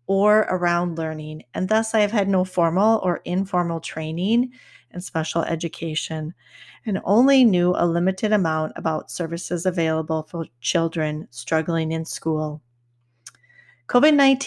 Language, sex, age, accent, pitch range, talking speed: English, female, 30-49, American, 160-200 Hz, 130 wpm